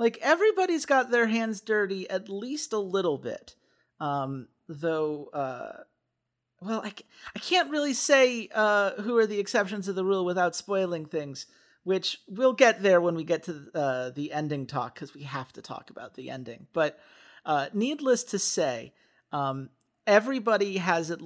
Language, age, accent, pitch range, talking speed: English, 40-59, American, 135-195 Hz, 170 wpm